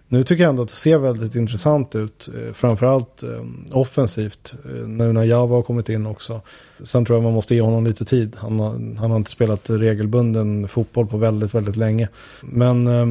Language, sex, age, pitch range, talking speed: English, male, 30-49, 115-125 Hz, 190 wpm